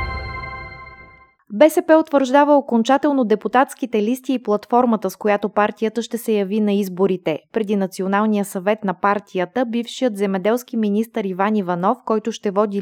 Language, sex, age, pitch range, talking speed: Bulgarian, female, 20-39, 190-245 Hz, 130 wpm